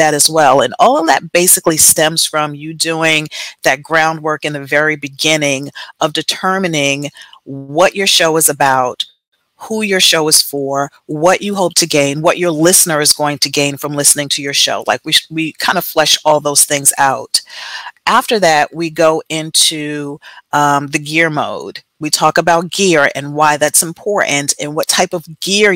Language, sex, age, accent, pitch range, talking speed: English, female, 40-59, American, 145-170 Hz, 185 wpm